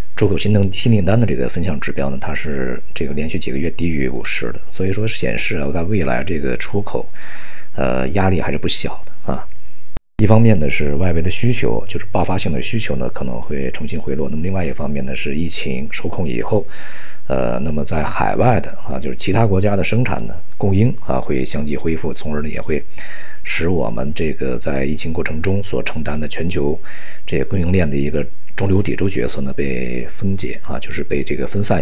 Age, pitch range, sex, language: 50-69, 70-100 Hz, male, Chinese